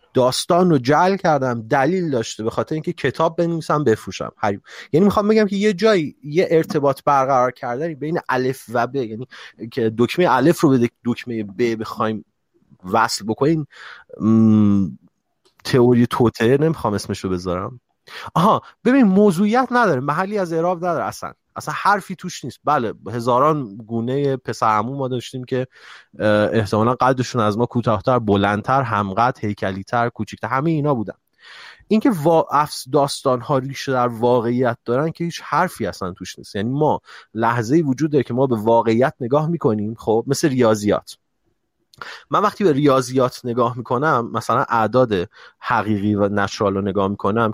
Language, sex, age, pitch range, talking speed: Persian, male, 30-49, 110-155 Hz, 150 wpm